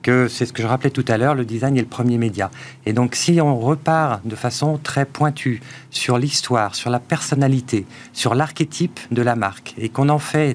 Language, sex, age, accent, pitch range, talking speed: French, male, 50-69, French, 115-140 Hz, 215 wpm